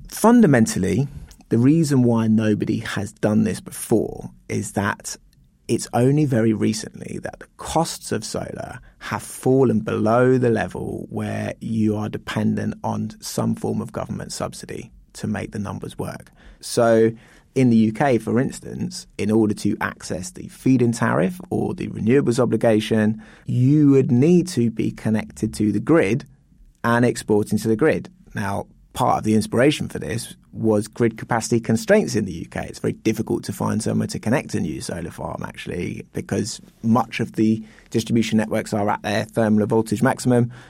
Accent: British